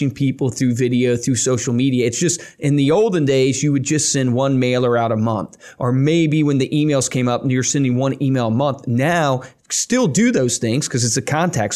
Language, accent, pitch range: English, American, 125-160 Hz